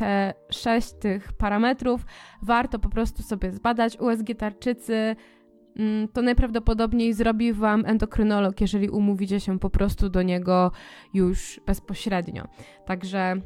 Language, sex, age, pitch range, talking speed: Polish, female, 20-39, 205-255 Hz, 115 wpm